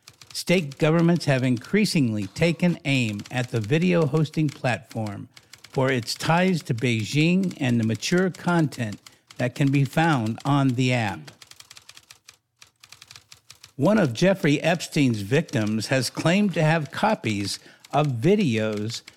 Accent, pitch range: American, 120-170 Hz